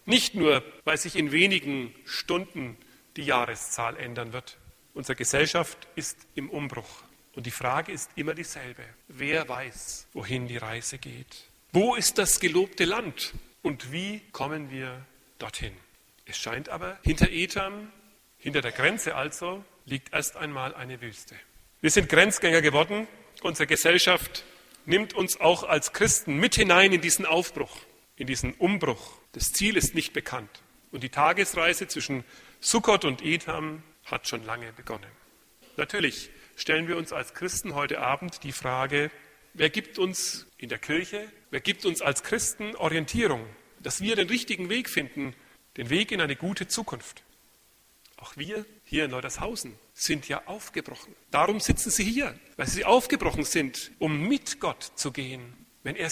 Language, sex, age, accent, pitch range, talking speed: German, male, 40-59, German, 135-195 Hz, 155 wpm